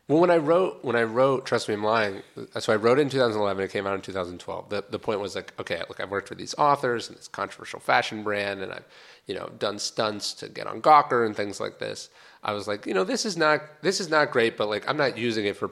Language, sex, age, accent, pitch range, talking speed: English, male, 30-49, American, 95-125 Hz, 270 wpm